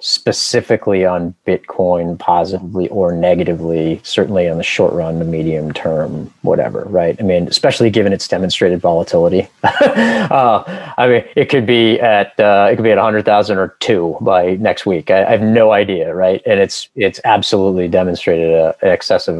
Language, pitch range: English, 85-110 Hz